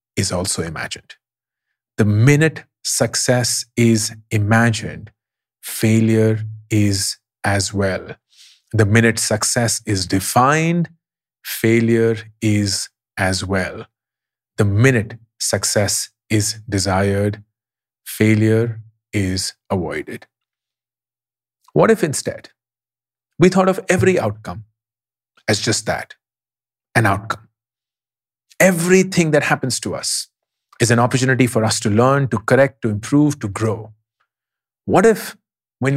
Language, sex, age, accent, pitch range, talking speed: English, male, 40-59, Indian, 110-135 Hz, 105 wpm